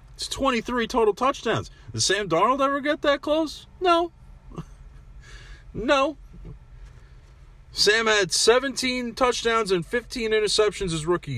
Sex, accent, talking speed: male, American, 110 wpm